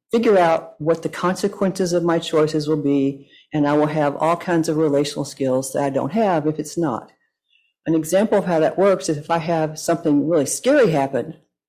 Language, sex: English, female